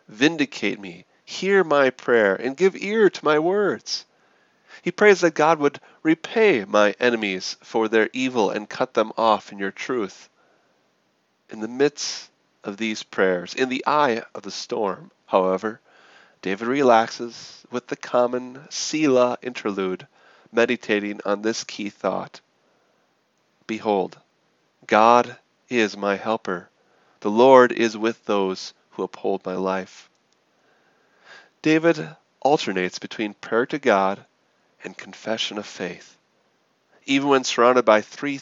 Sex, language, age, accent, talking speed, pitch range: male, English, 40-59, American, 130 wpm, 105-135 Hz